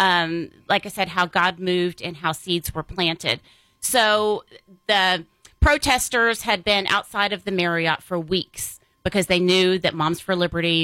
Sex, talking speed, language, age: female, 165 wpm, English, 30-49